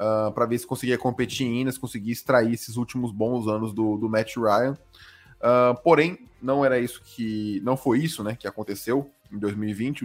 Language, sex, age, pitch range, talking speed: Portuguese, male, 20-39, 105-125 Hz, 190 wpm